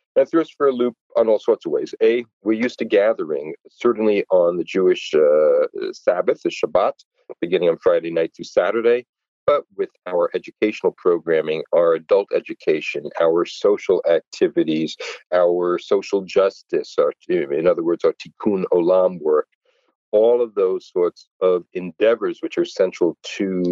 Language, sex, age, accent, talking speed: English, male, 50-69, American, 155 wpm